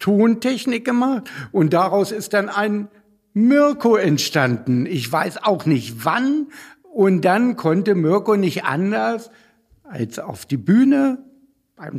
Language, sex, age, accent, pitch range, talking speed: German, male, 60-79, German, 150-205 Hz, 125 wpm